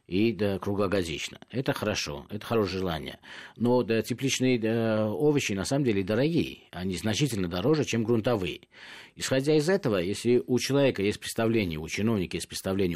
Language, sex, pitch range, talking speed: Russian, male, 100-130 Hz, 160 wpm